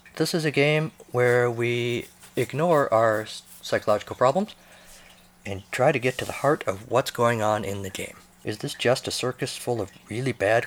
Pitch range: 100-140 Hz